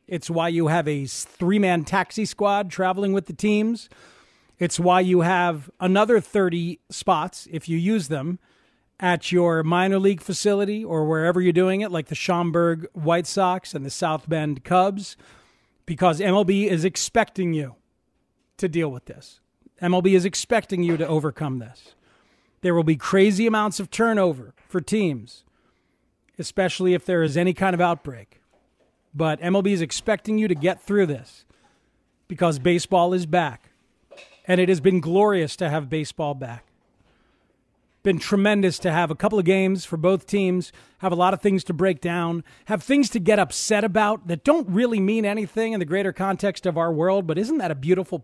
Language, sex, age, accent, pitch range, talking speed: English, male, 40-59, American, 165-200 Hz, 175 wpm